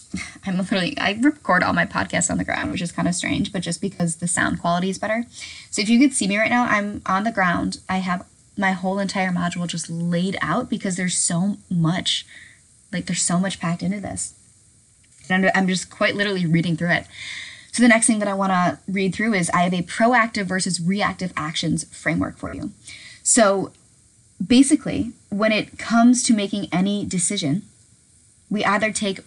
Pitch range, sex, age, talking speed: 170-215 Hz, female, 10-29, 195 wpm